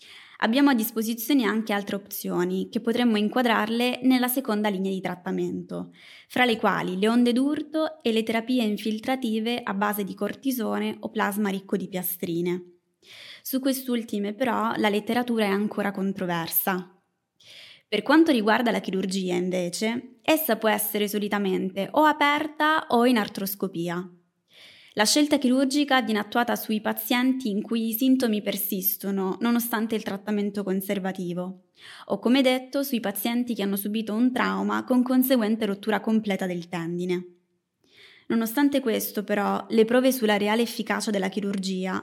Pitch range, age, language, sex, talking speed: 195-240 Hz, 20-39, Italian, female, 140 wpm